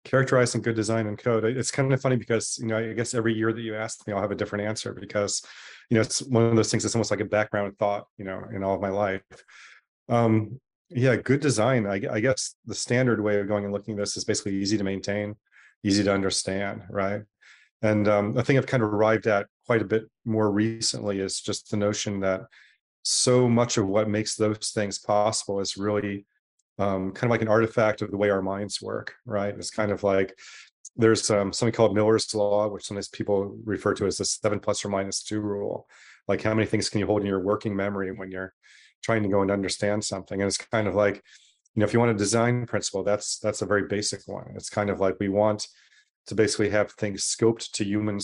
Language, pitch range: English, 100-110 Hz